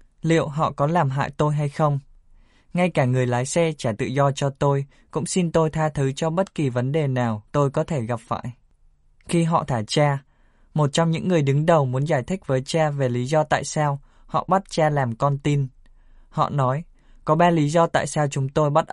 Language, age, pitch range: Vietnamese, 20-39, 130-155 Hz